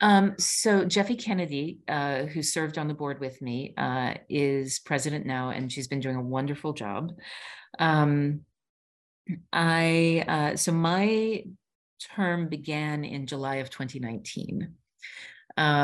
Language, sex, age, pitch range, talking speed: English, female, 40-59, 135-170 Hz, 130 wpm